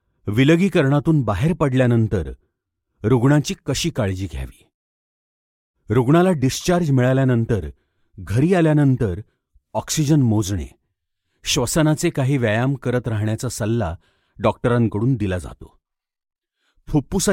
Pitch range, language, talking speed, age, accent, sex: 95-150 Hz, Marathi, 85 wpm, 40-59, native, male